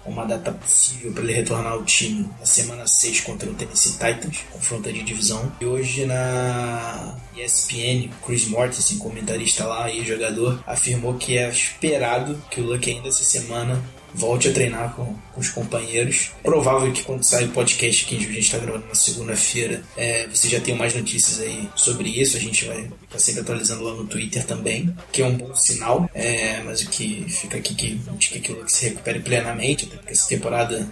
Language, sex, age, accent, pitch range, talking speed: Portuguese, male, 20-39, Brazilian, 115-130 Hz, 195 wpm